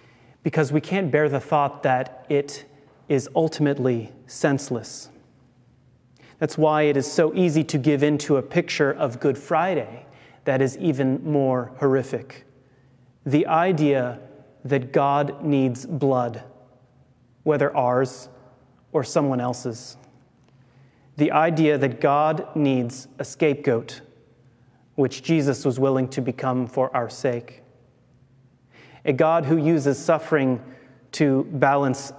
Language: English